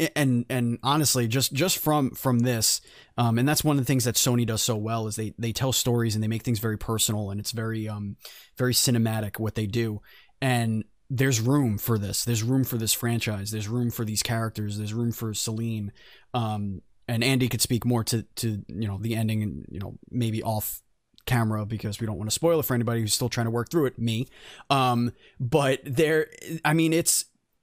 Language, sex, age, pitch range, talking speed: English, male, 20-39, 110-130 Hz, 215 wpm